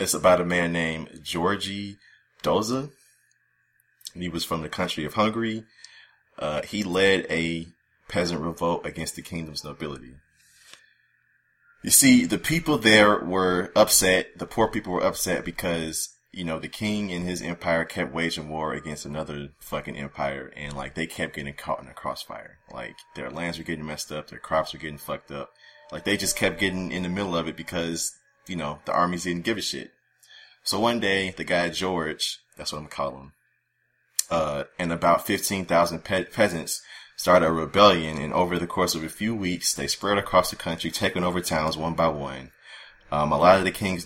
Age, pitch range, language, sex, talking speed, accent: 30-49, 80-90 Hz, English, male, 190 wpm, American